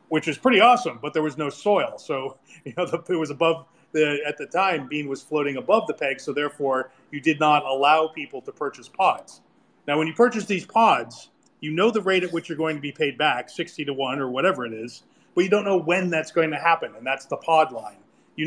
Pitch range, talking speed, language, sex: 140-175 Hz, 245 wpm, English, male